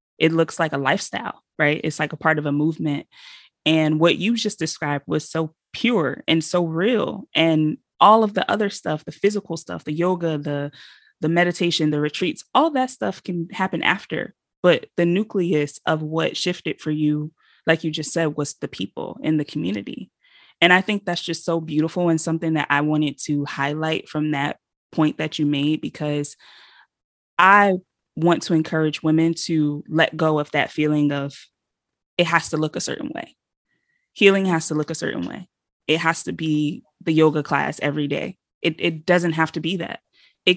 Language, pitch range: English, 150-180 Hz